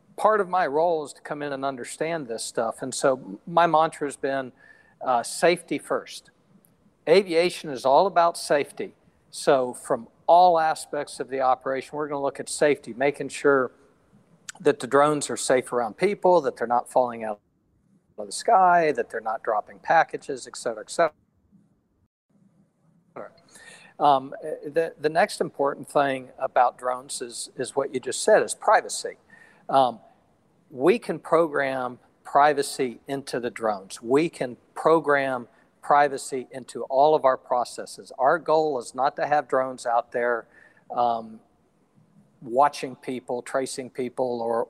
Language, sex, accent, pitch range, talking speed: English, male, American, 125-165 Hz, 150 wpm